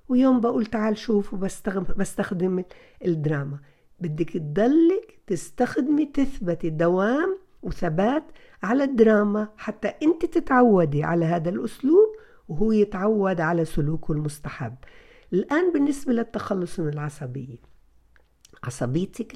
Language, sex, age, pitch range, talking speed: Arabic, female, 50-69, 150-230 Hz, 95 wpm